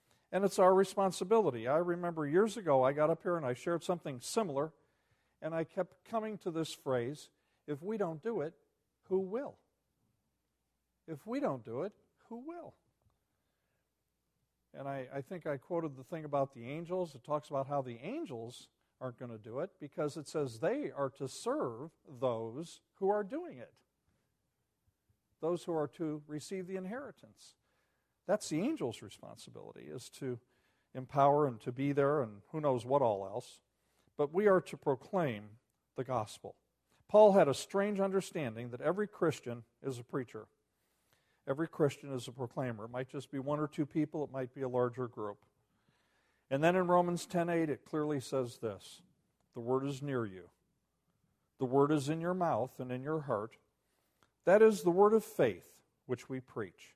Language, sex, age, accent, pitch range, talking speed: English, male, 50-69, American, 125-175 Hz, 175 wpm